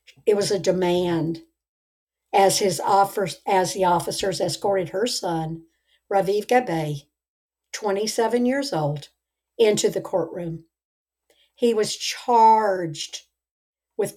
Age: 60-79